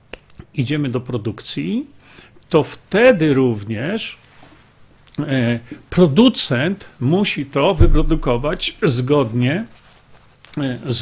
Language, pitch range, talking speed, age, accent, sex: Polish, 120-165 Hz, 65 wpm, 50-69, native, male